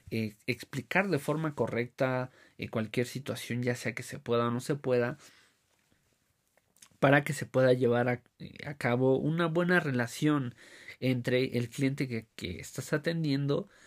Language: Spanish